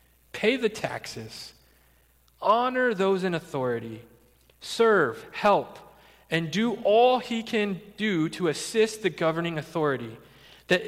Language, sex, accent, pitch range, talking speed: English, male, American, 150-235 Hz, 115 wpm